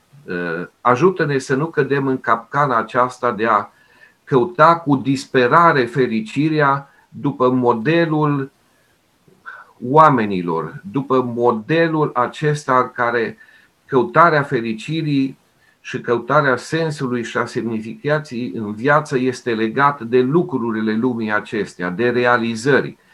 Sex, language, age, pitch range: male, Romanian, 50-69, 120-145 Hz